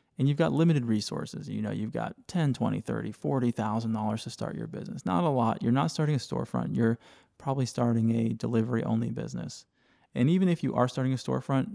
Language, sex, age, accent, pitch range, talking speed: English, male, 20-39, American, 110-135 Hz, 205 wpm